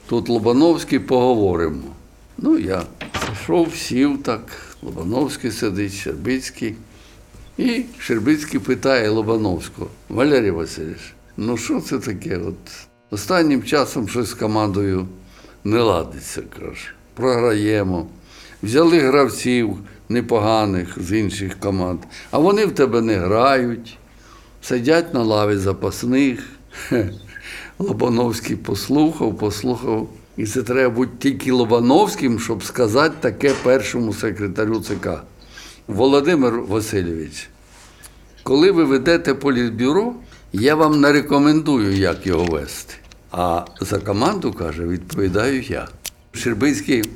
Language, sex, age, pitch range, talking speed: Ukrainian, male, 60-79, 100-135 Hz, 105 wpm